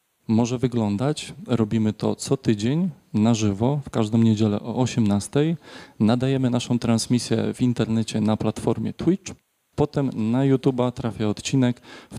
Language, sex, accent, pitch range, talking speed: Polish, male, native, 110-130 Hz, 135 wpm